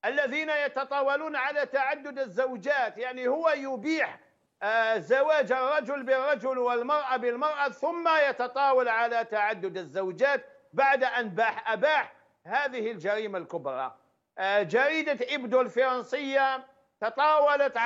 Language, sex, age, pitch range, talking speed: Arabic, male, 50-69, 230-285 Hz, 95 wpm